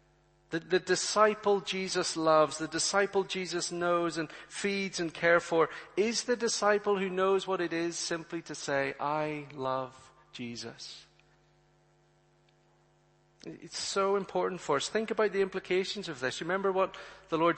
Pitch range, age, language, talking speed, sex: 160-195 Hz, 40-59, English, 145 wpm, male